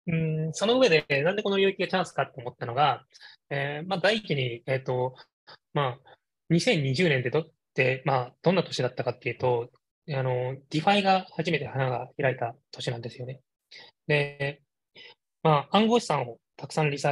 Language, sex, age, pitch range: Japanese, male, 20-39, 125-160 Hz